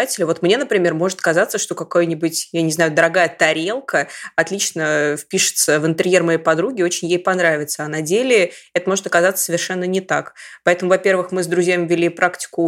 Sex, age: female, 20-39